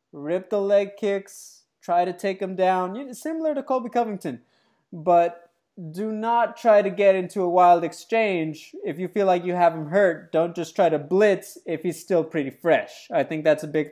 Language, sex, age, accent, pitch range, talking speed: English, male, 20-39, American, 160-200 Hz, 200 wpm